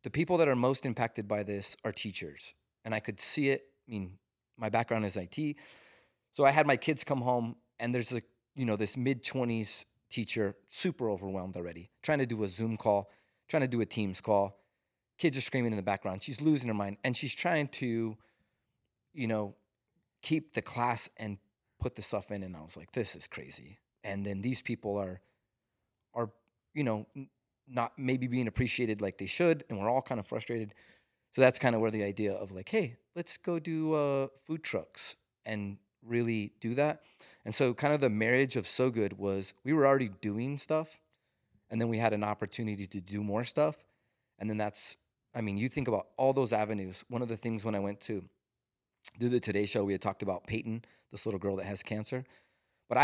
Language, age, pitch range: English, 30-49, 105-130 Hz